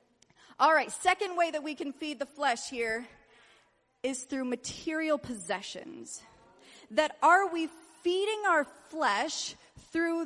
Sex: female